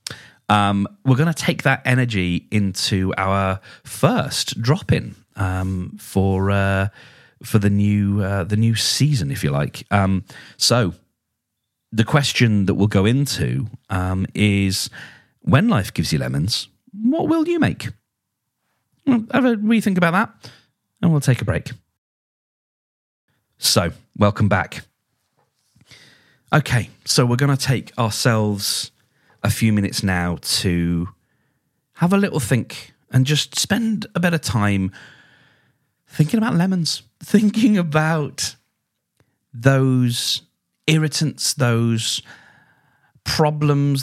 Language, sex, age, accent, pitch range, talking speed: English, male, 30-49, British, 105-145 Hz, 120 wpm